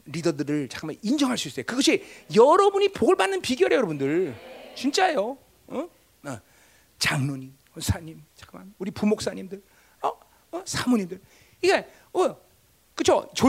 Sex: male